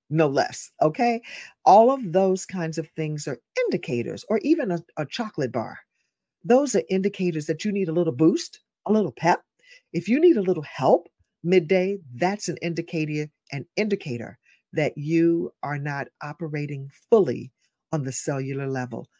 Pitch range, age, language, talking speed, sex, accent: 145-185 Hz, 50-69, English, 155 wpm, female, American